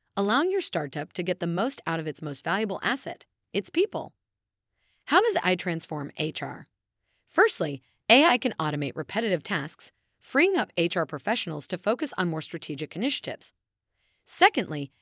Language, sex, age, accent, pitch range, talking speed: English, female, 30-49, American, 155-230 Hz, 150 wpm